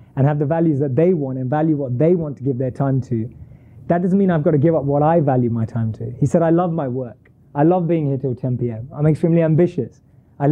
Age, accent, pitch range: 30-49, British, 130-175 Hz